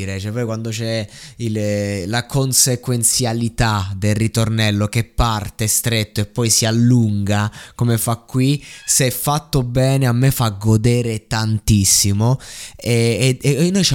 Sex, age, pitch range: male, 20-39, 110-140 Hz